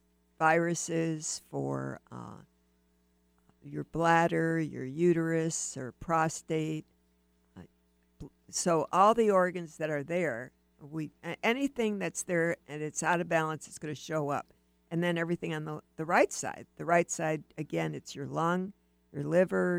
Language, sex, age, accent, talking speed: English, female, 60-79, American, 145 wpm